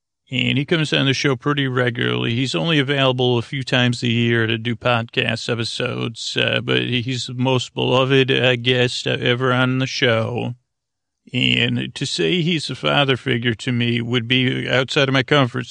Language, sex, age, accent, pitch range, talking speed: English, male, 40-59, American, 120-135 Hz, 180 wpm